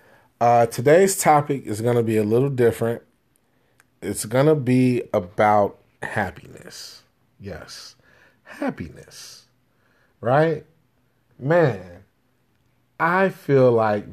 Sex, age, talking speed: male, 30-49, 100 wpm